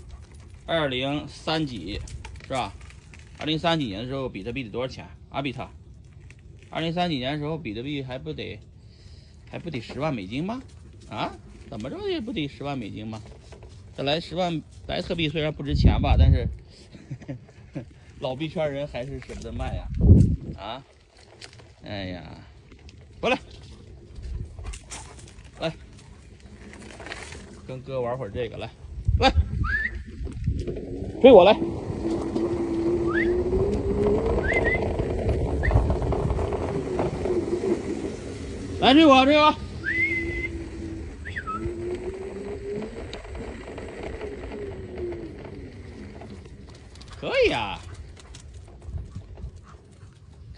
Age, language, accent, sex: 30-49, Chinese, native, male